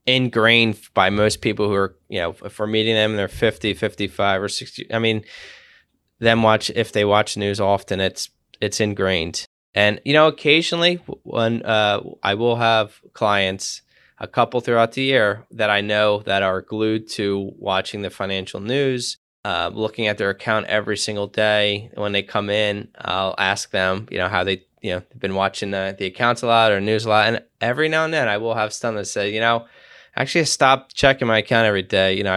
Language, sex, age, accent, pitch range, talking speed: English, male, 10-29, American, 100-115 Hz, 210 wpm